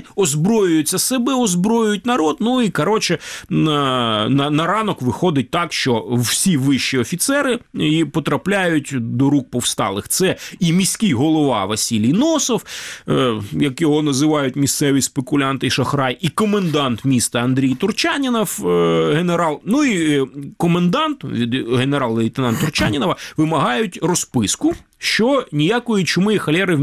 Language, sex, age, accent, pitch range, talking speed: Ukrainian, male, 30-49, native, 135-210 Hz, 125 wpm